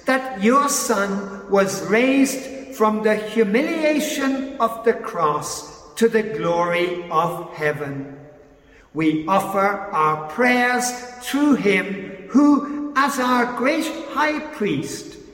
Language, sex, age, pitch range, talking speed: English, male, 60-79, 170-255 Hz, 110 wpm